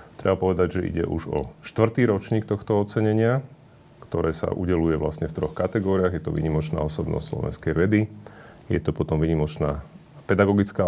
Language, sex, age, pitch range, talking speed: Slovak, male, 40-59, 75-100 Hz, 155 wpm